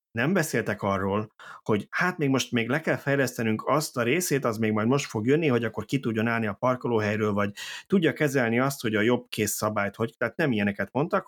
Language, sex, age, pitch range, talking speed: Hungarian, male, 30-49, 100-120 Hz, 220 wpm